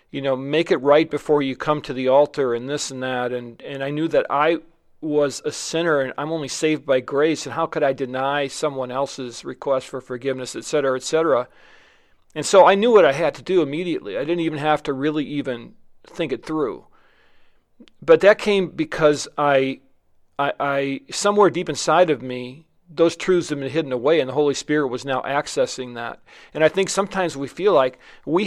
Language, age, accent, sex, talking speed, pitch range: English, 40-59, American, male, 205 wpm, 135-170 Hz